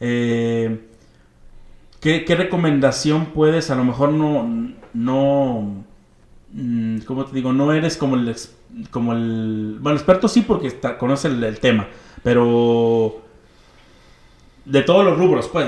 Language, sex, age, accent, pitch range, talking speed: Spanish, male, 30-49, Mexican, 115-155 Hz, 130 wpm